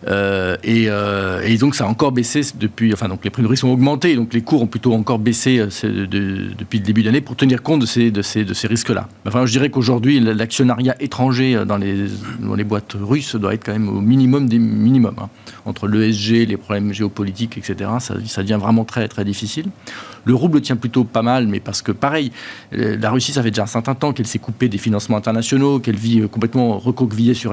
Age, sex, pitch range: 50-69, male, 105-125 Hz